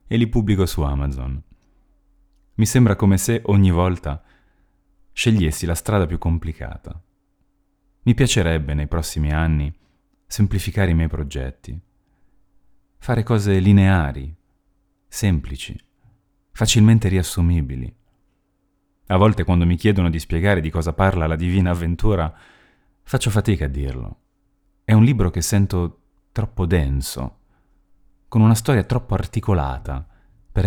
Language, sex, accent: Italian, male, native